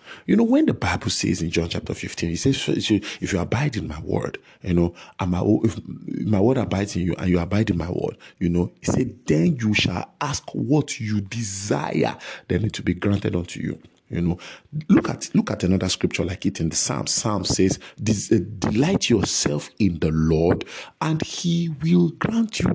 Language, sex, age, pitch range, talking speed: English, male, 50-69, 90-120 Hz, 205 wpm